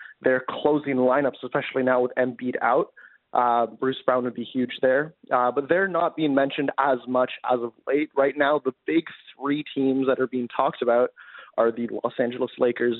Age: 20-39